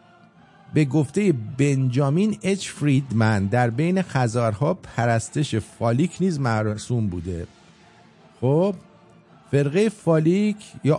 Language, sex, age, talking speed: English, male, 50-69, 85 wpm